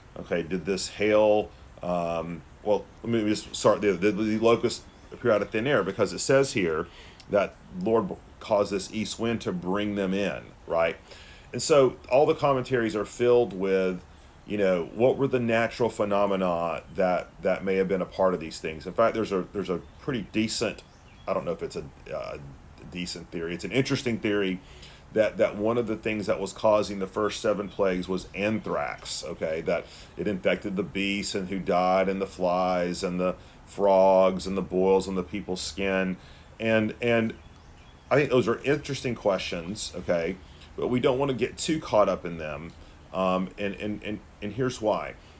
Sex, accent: male, American